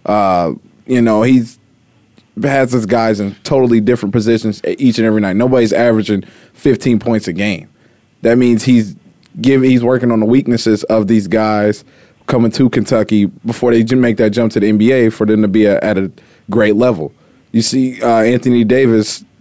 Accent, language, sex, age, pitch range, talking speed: American, English, male, 20-39, 110-125 Hz, 180 wpm